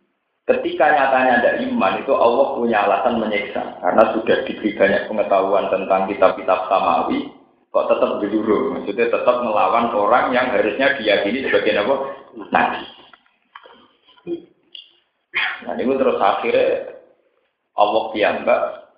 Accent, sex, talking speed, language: native, male, 110 wpm, Indonesian